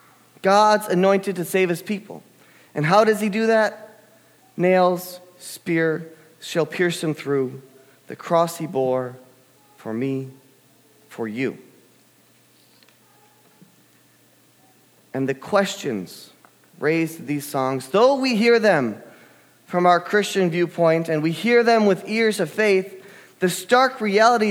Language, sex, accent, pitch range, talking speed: English, male, American, 160-215 Hz, 125 wpm